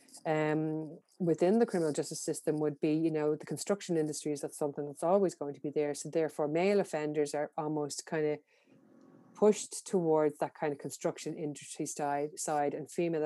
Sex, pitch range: female, 155-185 Hz